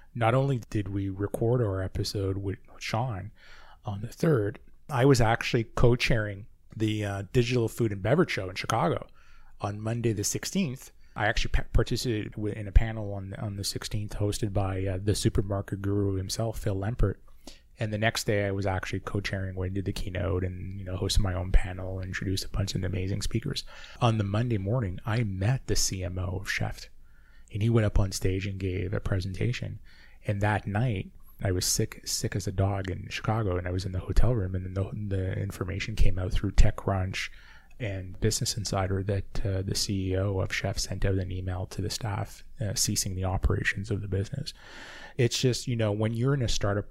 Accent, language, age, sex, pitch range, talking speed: American, English, 20-39, male, 95-115 Hz, 195 wpm